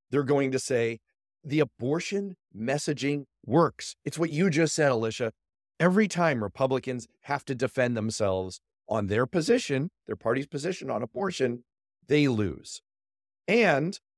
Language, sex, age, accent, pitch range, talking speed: English, male, 40-59, American, 105-150 Hz, 135 wpm